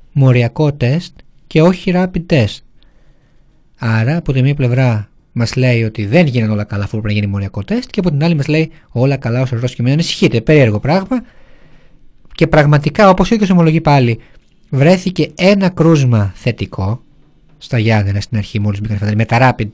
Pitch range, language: 125-175 Hz, Greek